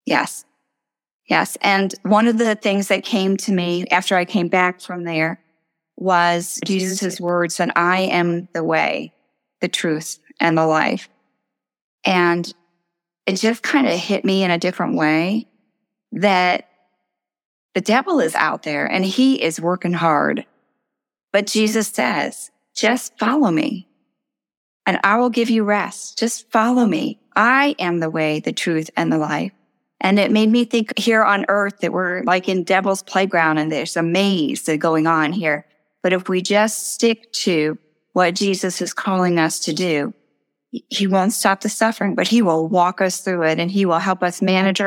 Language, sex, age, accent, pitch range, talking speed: English, female, 30-49, American, 175-215 Hz, 170 wpm